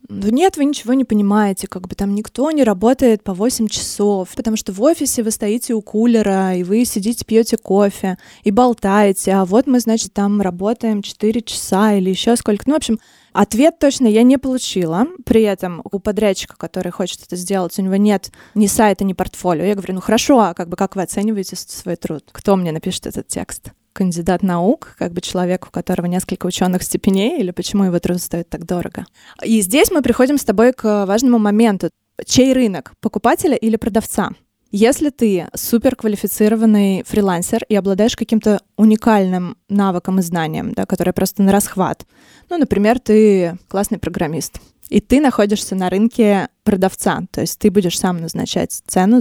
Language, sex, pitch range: Russian, female, 185-230 Hz